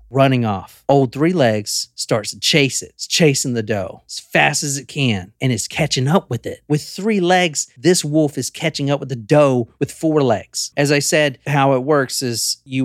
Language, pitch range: English, 125-165 Hz